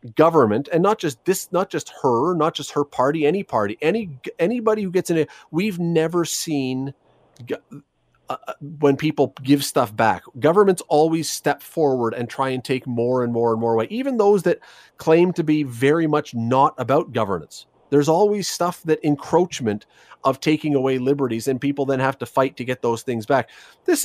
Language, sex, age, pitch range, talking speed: English, male, 40-59, 130-170 Hz, 185 wpm